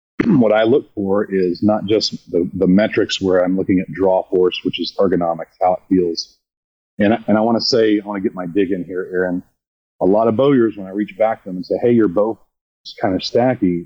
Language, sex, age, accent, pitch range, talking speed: English, male, 40-59, American, 90-110 Hz, 245 wpm